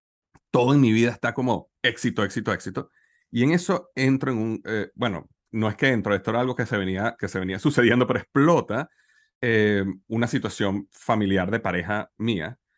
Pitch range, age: 105-130 Hz, 30-49